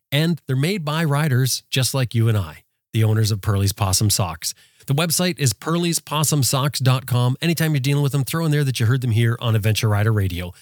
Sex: male